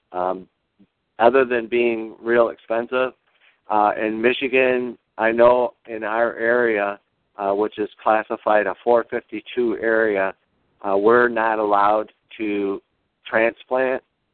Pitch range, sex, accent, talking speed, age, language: 100-115 Hz, male, American, 115 wpm, 50-69, English